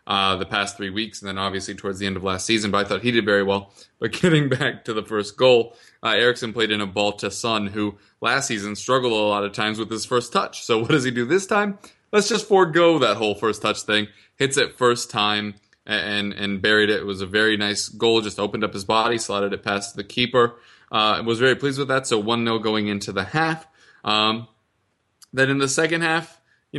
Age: 20-39